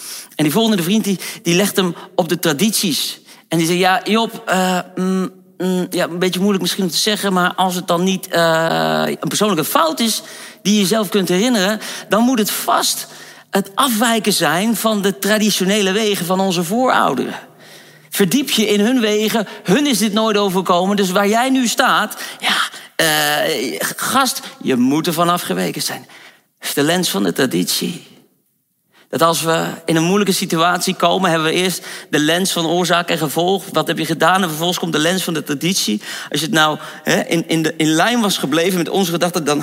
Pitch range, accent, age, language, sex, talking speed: 165-205 Hz, Dutch, 40-59, Dutch, male, 195 wpm